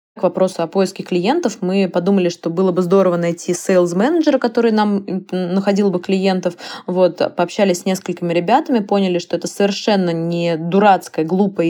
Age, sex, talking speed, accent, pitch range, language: 20-39, female, 155 wpm, native, 170-200 Hz, Russian